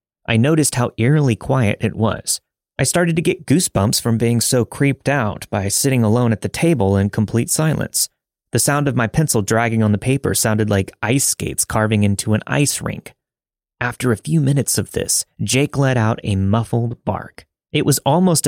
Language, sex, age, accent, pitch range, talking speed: English, male, 30-49, American, 100-135 Hz, 190 wpm